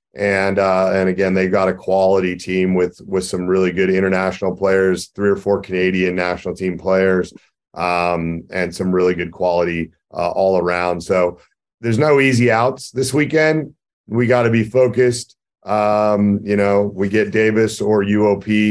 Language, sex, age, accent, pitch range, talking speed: English, male, 40-59, American, 100-120 Hz, 165 wpm